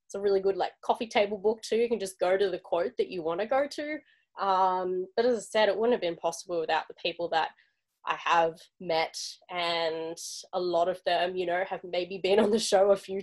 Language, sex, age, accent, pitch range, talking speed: English, female, 10-29, Australian, 175-205 Hz, 245 wpm